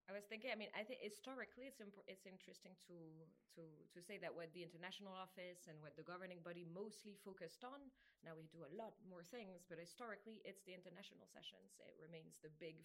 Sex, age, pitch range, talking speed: female, 20-39, 160-200 Hz, 215 wpm